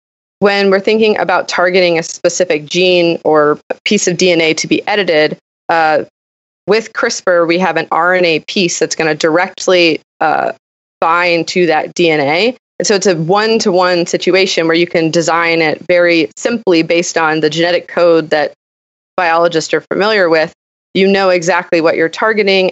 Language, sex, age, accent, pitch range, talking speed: English, female, 20-39, American, 160-190 Hz, 155 wpm